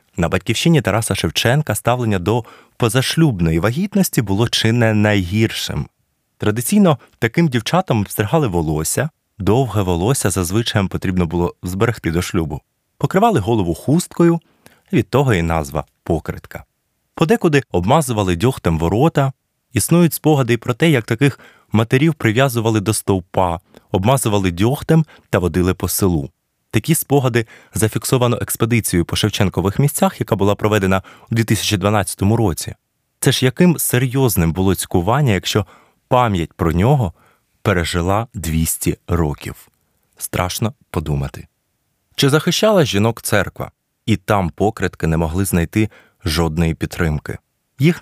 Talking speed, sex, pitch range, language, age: 115 wpm, male, 90-130 Hz, Ukrainian, 20-39